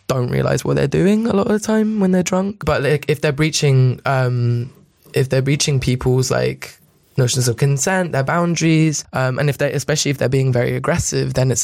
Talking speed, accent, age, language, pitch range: 210 wpm, British, 20-39, English, 125-145 Hz